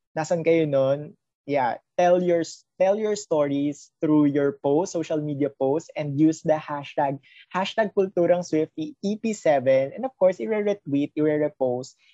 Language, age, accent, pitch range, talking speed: Filipino, 20-39, native, 130-170 Hz, 140 wpm